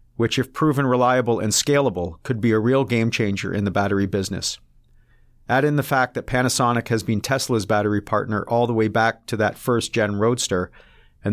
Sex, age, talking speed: male, 40-59, 185 wpm